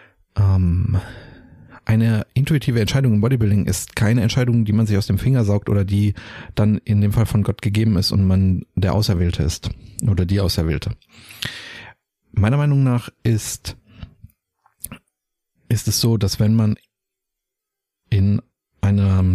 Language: German